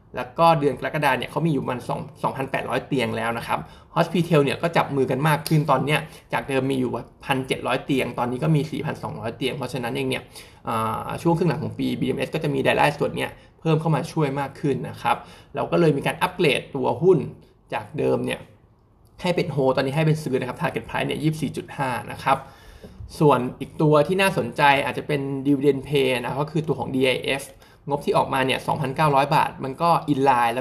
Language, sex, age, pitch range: Thai, male, 20-39, 130-155 Hz